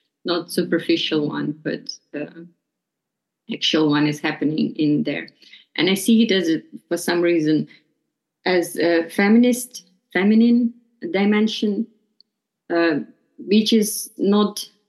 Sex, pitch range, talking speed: female, 165-210 Hz, 115 wpm